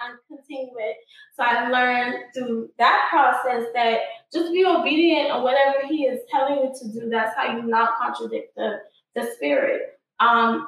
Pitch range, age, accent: 235-280 Hz, 10-29, American